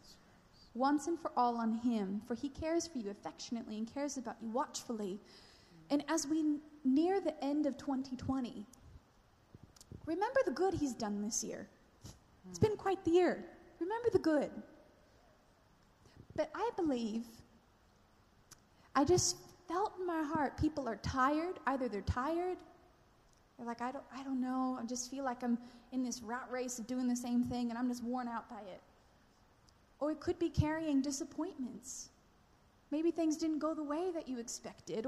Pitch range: 245-315 Hz